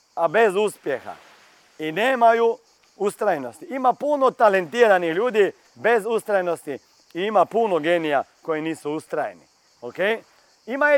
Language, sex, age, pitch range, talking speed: Croatian, male, 40-59, 165-240 Hz, 120 wpm